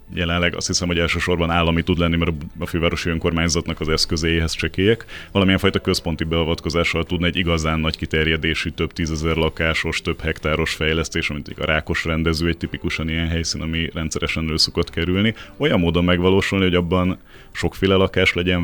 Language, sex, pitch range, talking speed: Hungarian, male, 80-90 Hz, 160 wpm